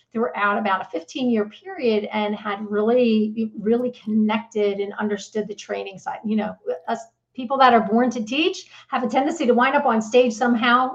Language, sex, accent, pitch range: English, female, American, 210-245 Hz